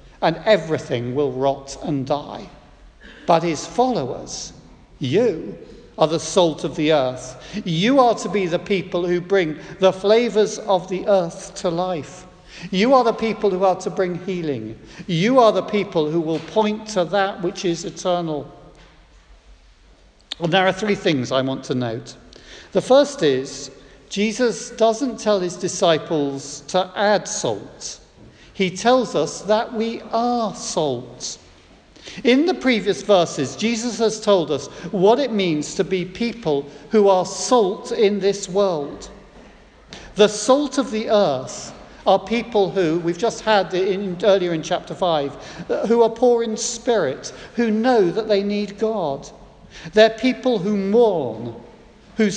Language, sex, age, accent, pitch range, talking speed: English, male, 50-69, British, 170-220 Hz, 150 wpm